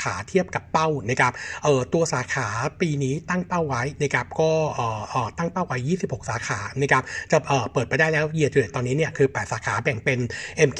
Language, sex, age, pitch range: Thai, male, 60-79, 125-160 Hz